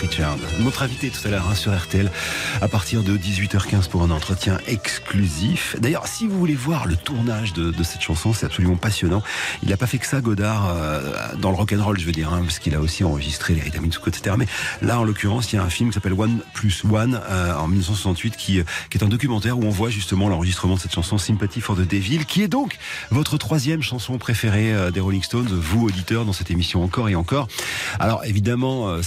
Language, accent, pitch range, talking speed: French, French, 90-115 Hz, 230 wpm